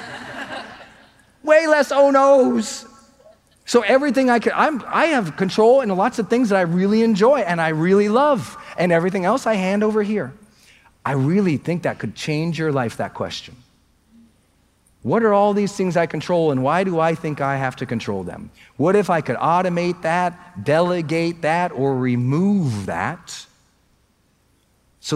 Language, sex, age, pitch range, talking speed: English, male, 40-59, 140-205 Hz, 165 wpm